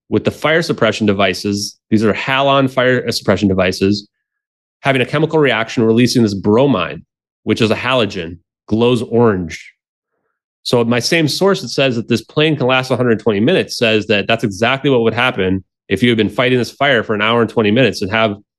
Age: 30-49